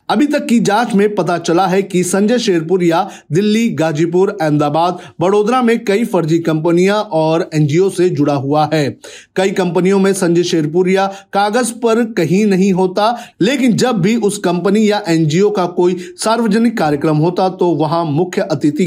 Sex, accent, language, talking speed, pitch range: male, native, Hindi, 160 wpm, 160-200 Hz